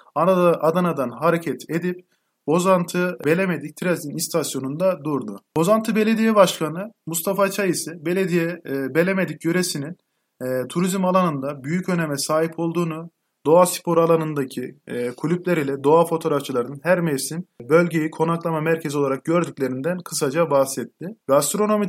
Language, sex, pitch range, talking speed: Turkish, male, 145-180 Hz, 110 wpm